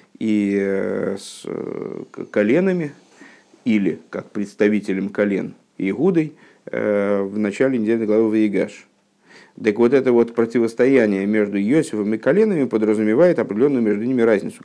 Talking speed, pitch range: 110 wpm, 105-130 Hz